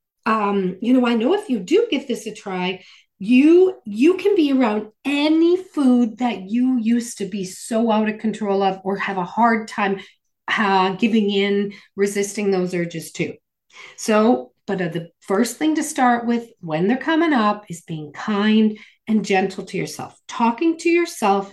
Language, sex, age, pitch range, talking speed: English, female, 40-59, 200-275 Hz, 180 wpm